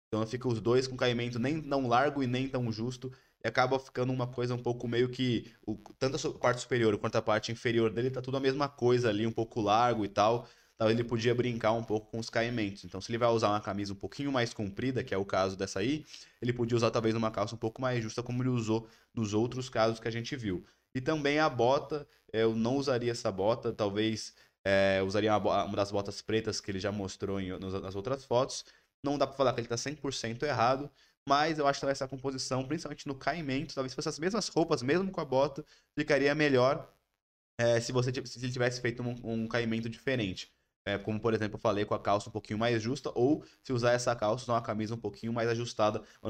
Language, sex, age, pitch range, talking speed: Portuguese, male, 20-39, 110-130 Hz, 235 wpm